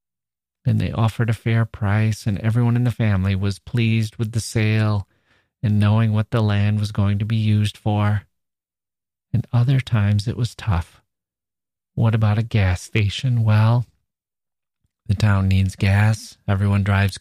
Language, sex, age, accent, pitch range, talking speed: English, male, 40-59, American, 100-120 Hz, 155 wpm